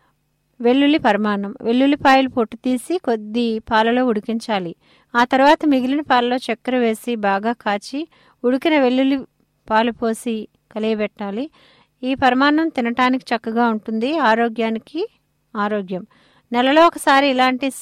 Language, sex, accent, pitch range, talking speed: English, female, Indian, 225-265 Hz, 130 wpm